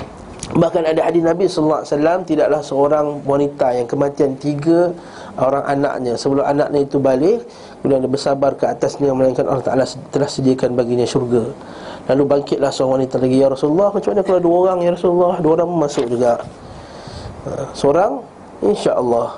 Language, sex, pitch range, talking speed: Malay, male, 140-175 Hz, 155 wpm